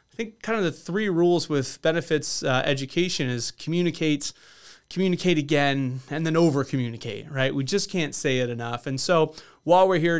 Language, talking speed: English, 180 wpm